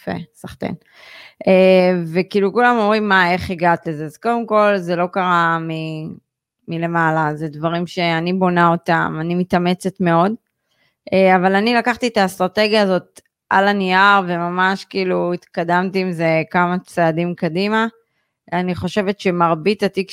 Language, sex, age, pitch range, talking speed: Hebrew, female, 20-39, 170-205 Hz, 125 wpm